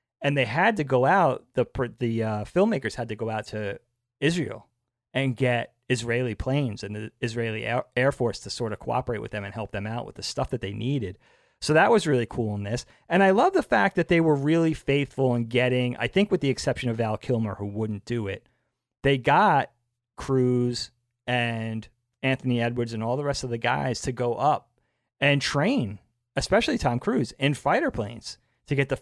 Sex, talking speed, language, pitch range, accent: male, 205 wpm, English, 115-135 Hz, American